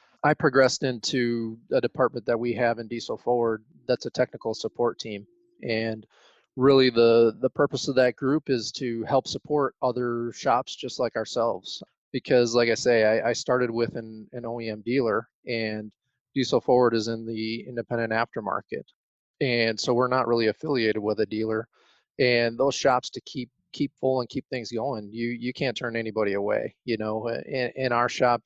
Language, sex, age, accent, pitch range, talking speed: English, male, 30-49, American, 110-125 Hz, 180 wpm